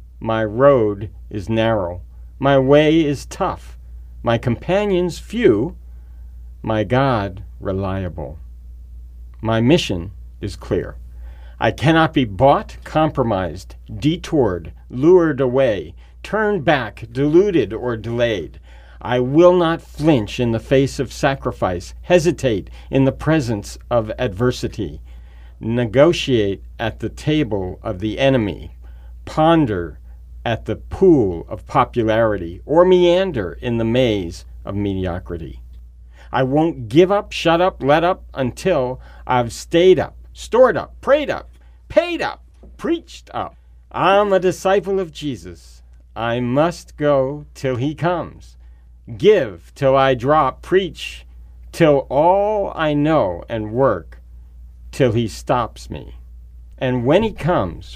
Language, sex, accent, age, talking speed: English, male, American, 50-69, 120 wpm